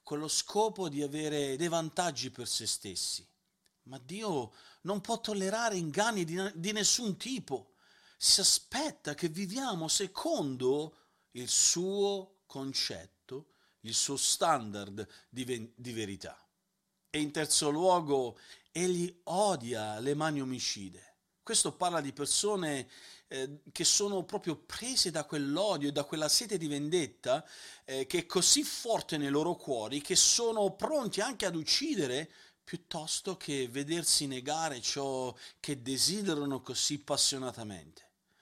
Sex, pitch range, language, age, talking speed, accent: male, 130-185 Hz, Italian, 50-69, 130 wpm, native